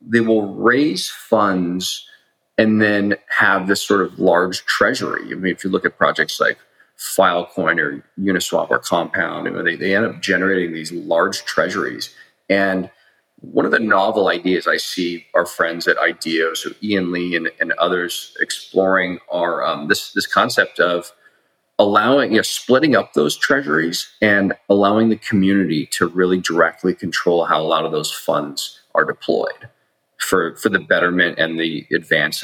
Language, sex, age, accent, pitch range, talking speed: English, male, 40-59, American, 90-105 Hz, 165 wpm